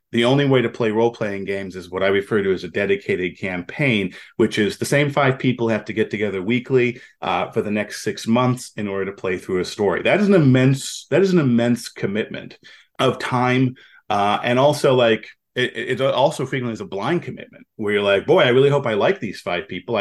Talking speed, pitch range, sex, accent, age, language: 230 wpm, 100-135 Hz, male, American, 30-49, English